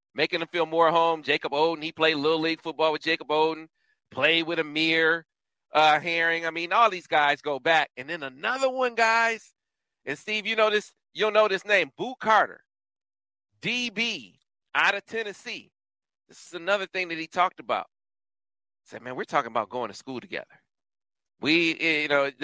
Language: English